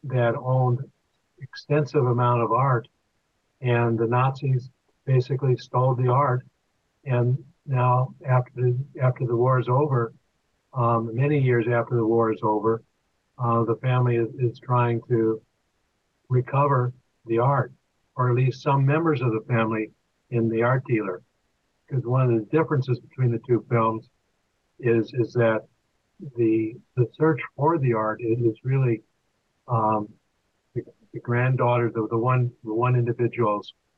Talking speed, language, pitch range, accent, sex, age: 145 wpm, English, 110-130 Hz, American, male, 60-79